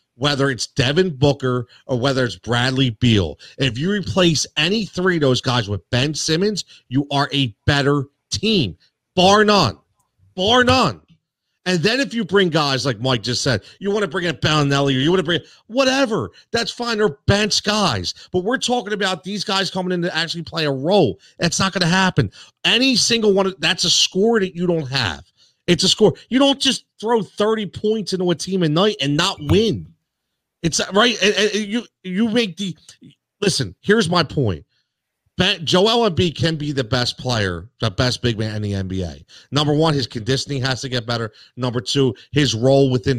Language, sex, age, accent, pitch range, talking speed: English, male, 40-59, American, 130-190 Hz, 190 wpm